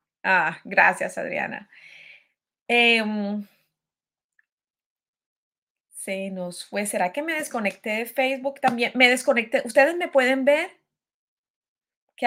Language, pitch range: English, 200-260 Hz